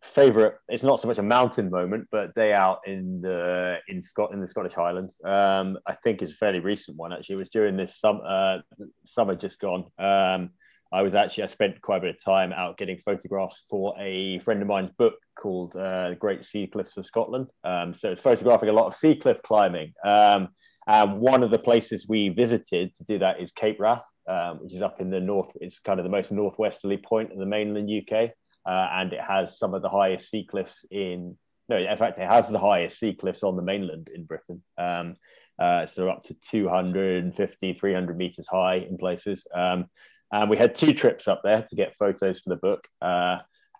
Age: 20-39